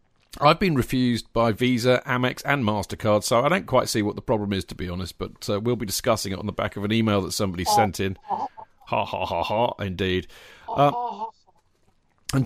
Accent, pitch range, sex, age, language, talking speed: British, 105-145 Hz, male, 40-59, English, 200 wpm